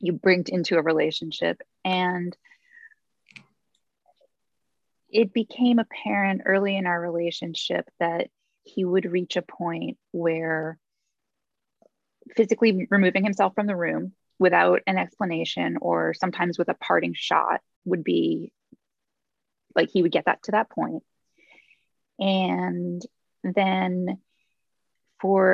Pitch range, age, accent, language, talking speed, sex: 170-205 Hz, 20-39, American, English, 115 wpm, female